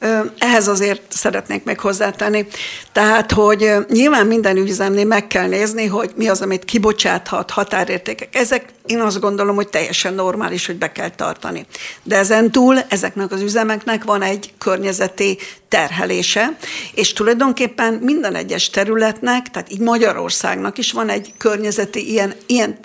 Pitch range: 200-230 Hz